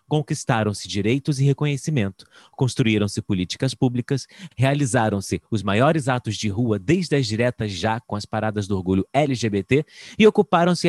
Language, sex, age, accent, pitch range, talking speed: Portuguese, male, 30-49, Brazilian, 110-150 Hz, 140 wpm